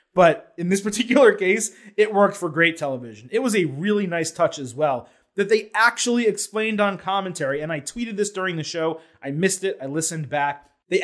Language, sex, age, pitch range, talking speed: English, male, 30-49, 150-195 Hz, 205 wpm